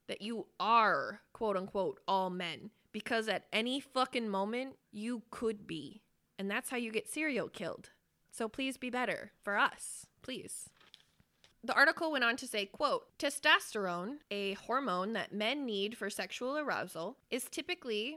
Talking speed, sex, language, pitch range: 155 wpm, female, English, 205-275 Hz